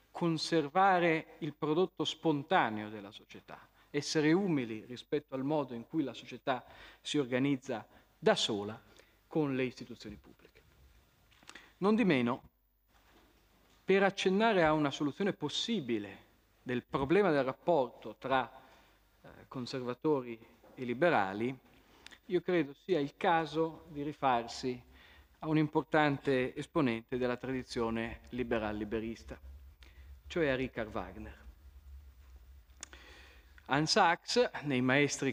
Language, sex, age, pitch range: Italian, male, 40-59, 115-160 Hz